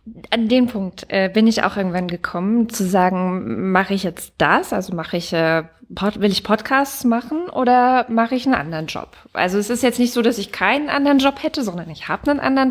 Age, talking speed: 20-39, 215 wpm